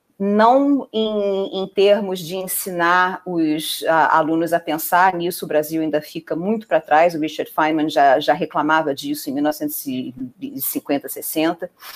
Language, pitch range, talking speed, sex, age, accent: Portuguese, 165-205 Hz, 135 wpm, female, 40-59, Brazilian